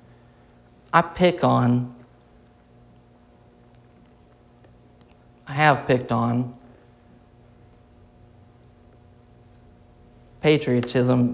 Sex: male